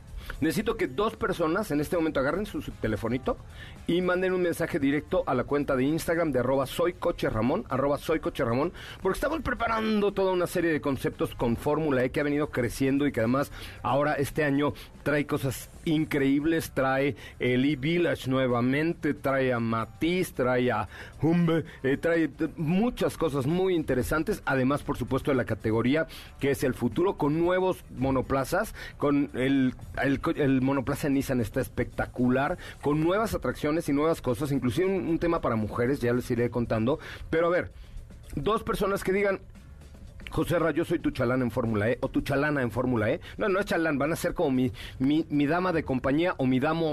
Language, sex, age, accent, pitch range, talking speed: Spanish, male, 40-59, Mexican, 125-165 Hz, 190 wpm